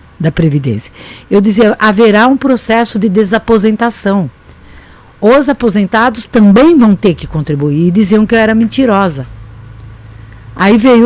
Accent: Brazilian